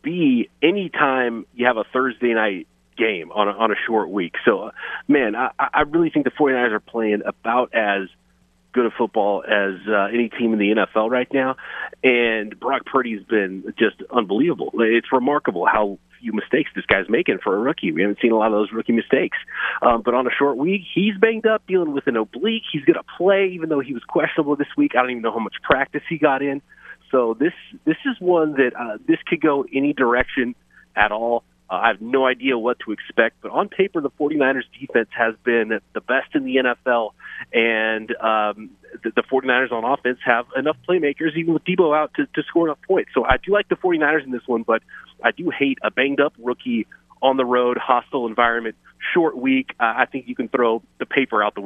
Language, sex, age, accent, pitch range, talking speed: English, male, 30-49, American, 110-150 Hz, 215 wpm